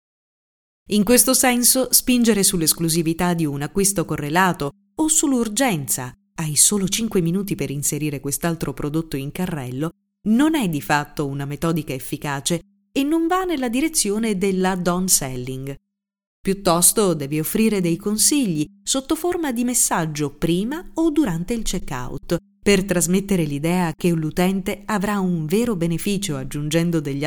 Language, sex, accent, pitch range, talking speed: Italian, female, native, 155-220 Hz, 135 wpm